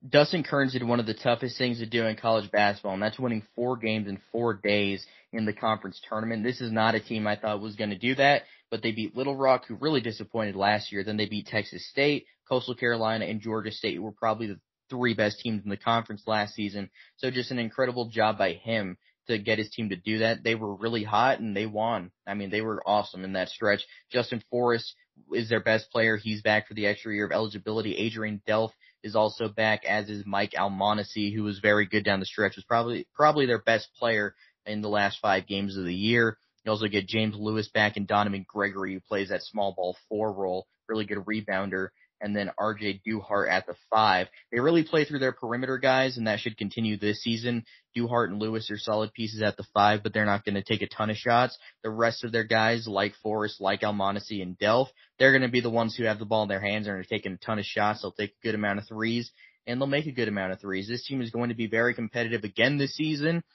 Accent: American